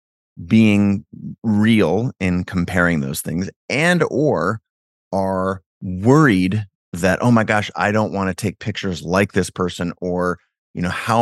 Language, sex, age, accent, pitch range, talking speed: English, male, 30-49, American, 95-120 Hz, 145 wpm